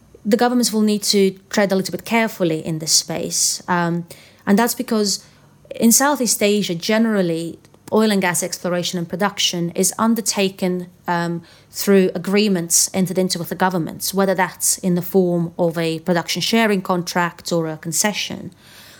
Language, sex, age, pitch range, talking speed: English, female, 30-49, 175-205 Hz, 160 wpm